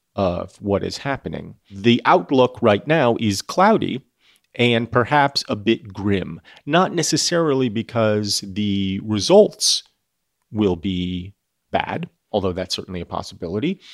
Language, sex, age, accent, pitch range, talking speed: English, male, 40-59, American, 100-135 Hz, 120 wpm